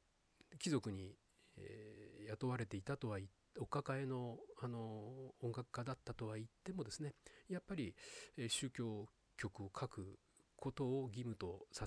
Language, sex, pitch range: Japanese, male, 105-145 Hz